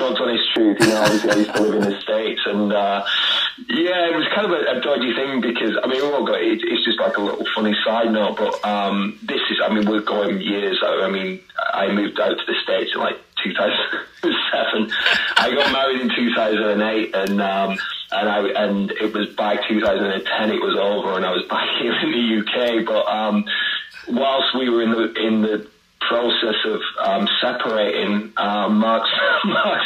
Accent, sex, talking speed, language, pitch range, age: British, male, 185 wpm, English, 105-130 Hz, 30-49